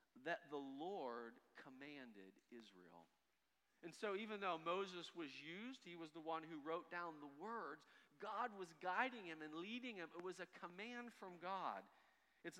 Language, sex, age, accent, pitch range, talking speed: English, male, 40-59, American, 160-205 Hz, 165 wpm